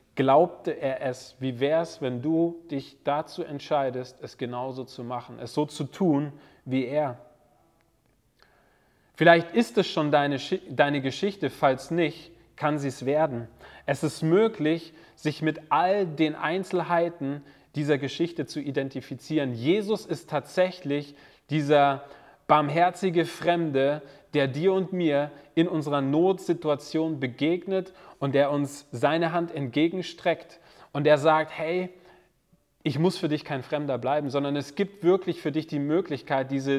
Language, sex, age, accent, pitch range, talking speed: German, male, 40-59, German, 140-170 Hz, 140 wpm